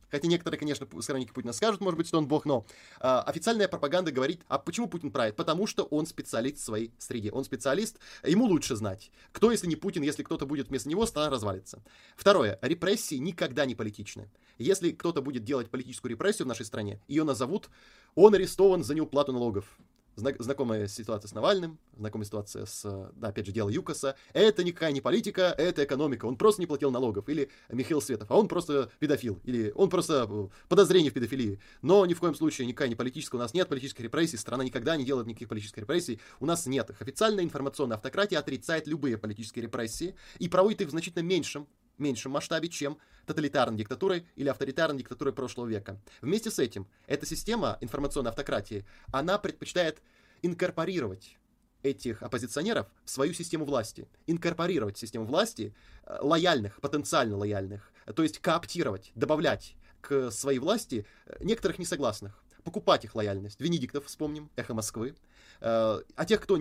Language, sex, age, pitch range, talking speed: Russian, male, 20-39, 120-170 Hz, 170 wpm